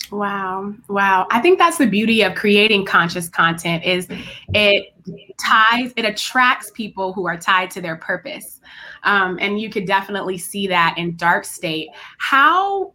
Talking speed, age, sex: 160 wpm, 20-39, female